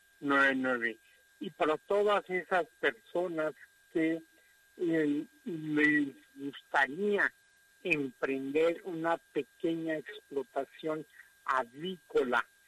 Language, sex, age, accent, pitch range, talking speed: Spanish, male, 60-79, Mexican, 145-230 Hz, 65 wpm